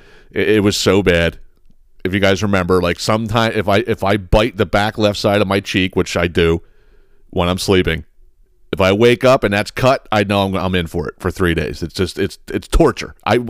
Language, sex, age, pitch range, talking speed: English, male, 40-59, 90-115 Hz, 225 wpm